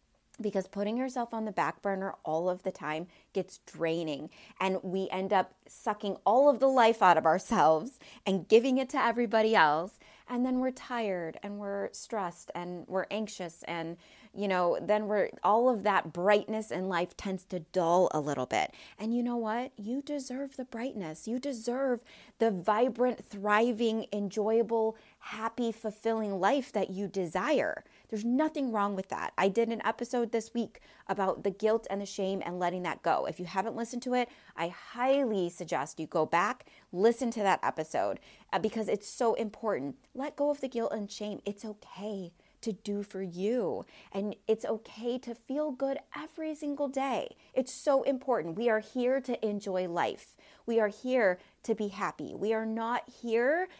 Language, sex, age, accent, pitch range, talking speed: English, female, 30-49, American, 190-245 Hz, 180 wpm